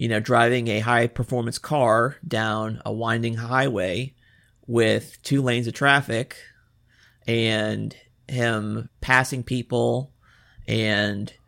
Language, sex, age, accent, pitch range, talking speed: English, male, 30-49, American, 110-125 Hz, 105 wpm